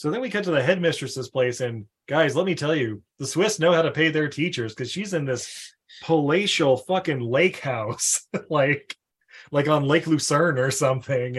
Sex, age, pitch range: male, 20-39, 130-185 Hz